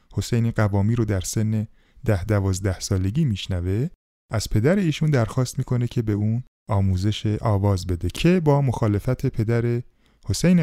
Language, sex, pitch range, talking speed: Persian, male, 105-140 Hz, 140 wpm